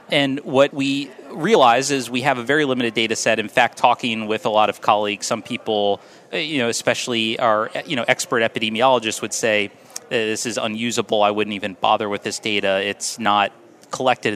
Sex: male